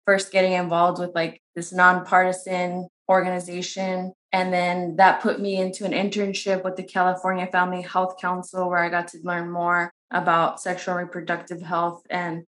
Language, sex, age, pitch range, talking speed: English, female, 20-39, 175-190 Hz, 160 wpm